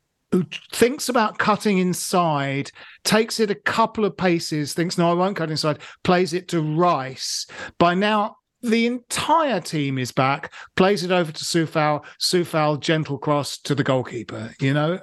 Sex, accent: male, British